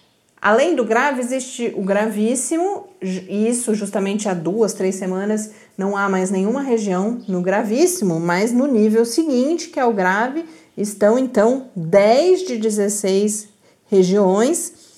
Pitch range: 175-235 Hz